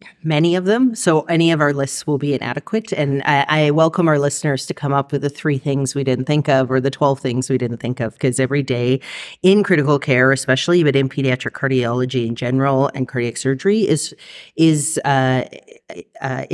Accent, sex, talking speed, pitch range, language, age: American, female, 205 wpm, 130-145 Hz, English, 40-59